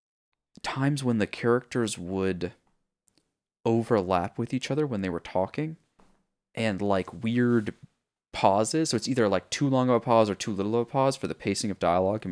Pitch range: 95-125 Hz